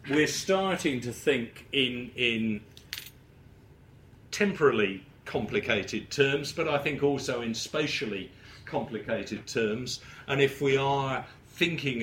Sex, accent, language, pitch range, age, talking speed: male, British, English, 110-135 Hz, 50-69, 110 wpm